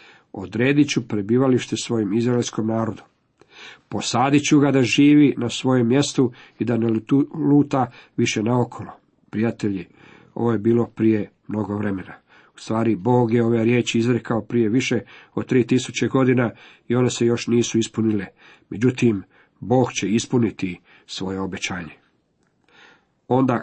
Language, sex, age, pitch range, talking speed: Croatian, male, 50-69, 110-135 Hz, 130 wpm